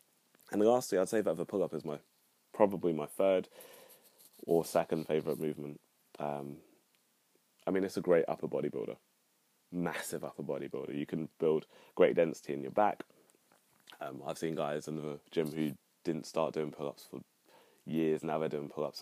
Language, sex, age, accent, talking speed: English, male, 20-39, British, 165 wpm